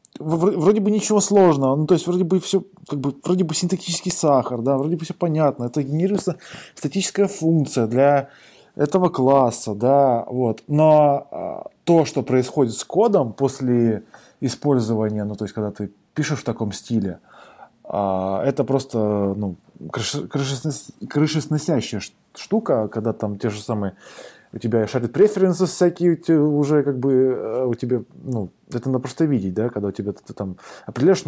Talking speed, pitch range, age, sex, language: 160 wpm, 115-155 Hz, 20-39, male, Russian